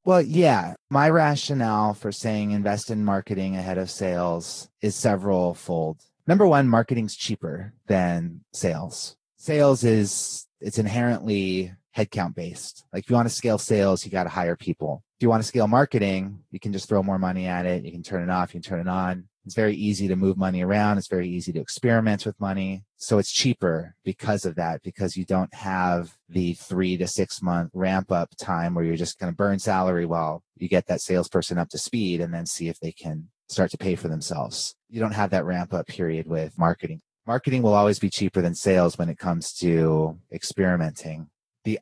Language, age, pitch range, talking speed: English, 30-49, 90-105 Hz, 205 wpm